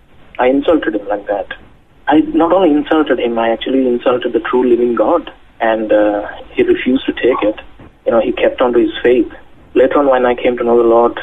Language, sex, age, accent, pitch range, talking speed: English, male, 30-49, Indian, 110-165 Hz, 220 wpm